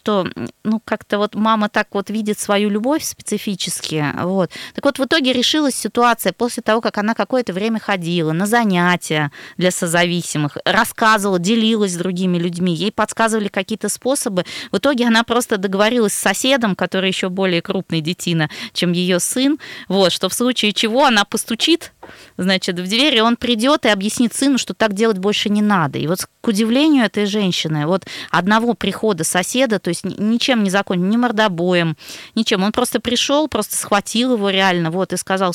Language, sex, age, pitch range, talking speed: Russian, female, 20-39, 180-230 Hz, 170 wpm